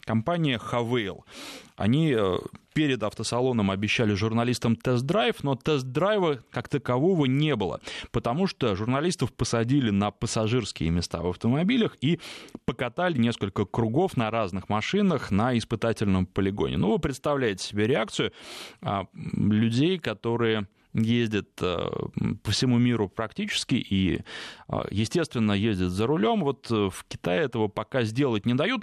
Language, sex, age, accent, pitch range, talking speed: Russian, male, 20-39, native, 110-145 Hz, 120 wpm